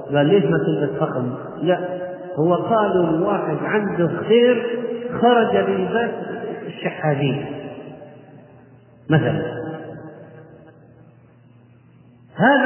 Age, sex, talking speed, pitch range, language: 30-49, male, 70 wpm, 145-210 Hz, Arabic